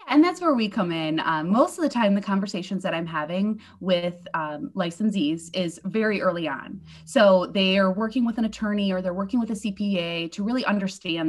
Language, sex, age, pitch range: English, female, 20-39, 185-235 Hz